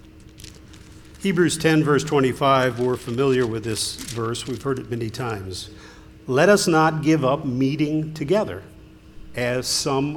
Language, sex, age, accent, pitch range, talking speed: English, male, 50-69, American, 125-165 Hz, 135 wpm